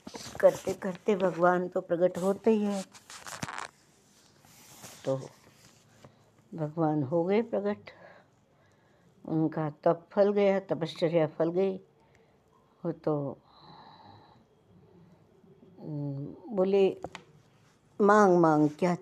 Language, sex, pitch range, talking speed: Hindi, female, 155-195 Hz, 80 wpm